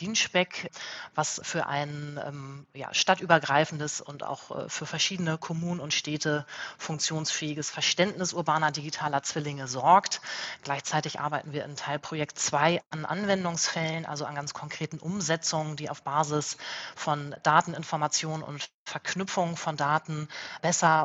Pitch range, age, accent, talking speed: 145-165 Hz, 30-49, German, 120 wpm